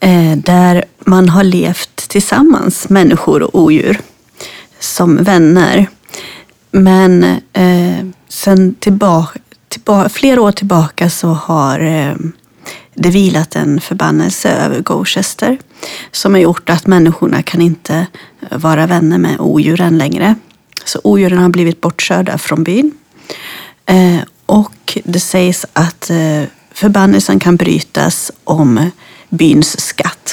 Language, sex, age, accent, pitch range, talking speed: Swedish, female, 30-49, native, 160-200 Hz, 115 wpm